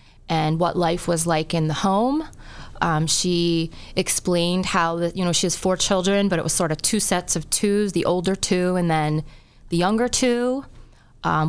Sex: female